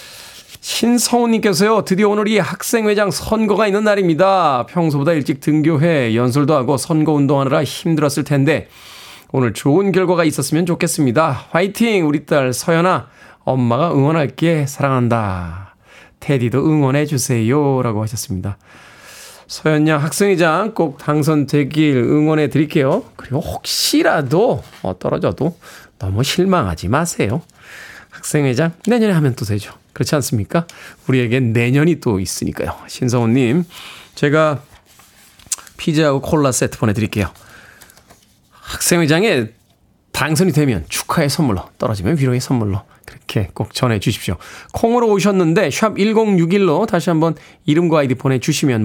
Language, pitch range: Korean, 130-170 Hz